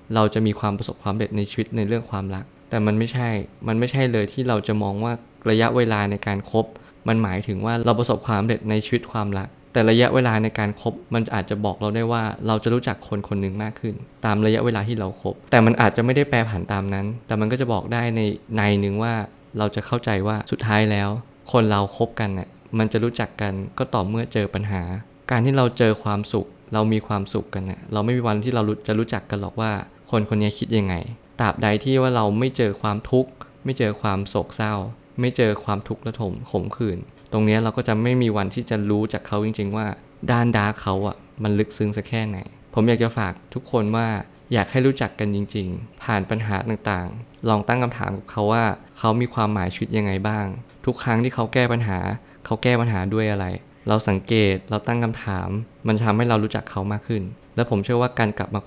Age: 20-39